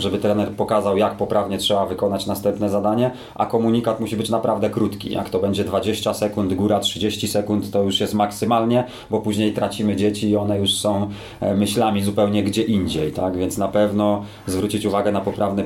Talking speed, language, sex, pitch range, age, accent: 180 wpm, Polish, male, 100-105 Hz, 30-49, native